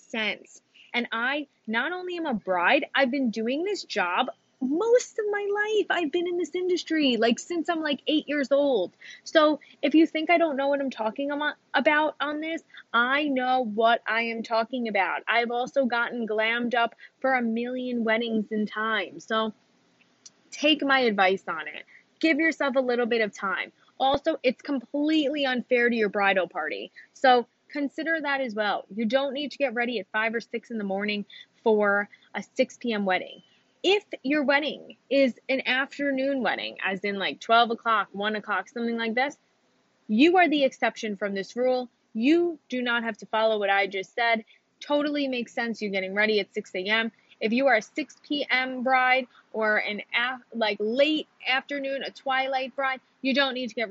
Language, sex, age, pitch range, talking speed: English, female, 20-39, 220-285 Hz, 185 wpm